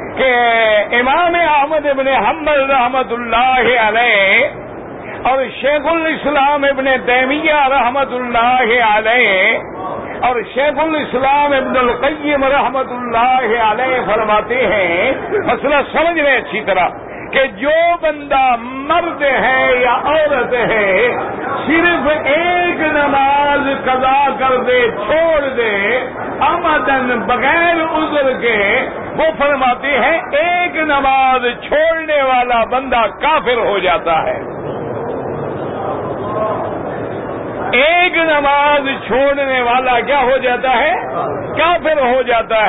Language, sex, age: English, male, 50-69